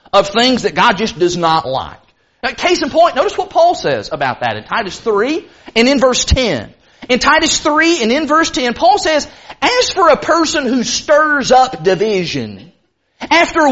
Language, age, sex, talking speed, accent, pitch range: English, 40-59, male, 185 wpm, American, 240-345 Hz